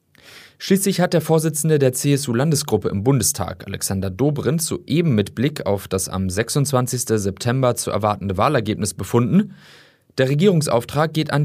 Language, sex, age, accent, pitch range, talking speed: German, male, 30-49, German, 105-145 Hz, 135 wpm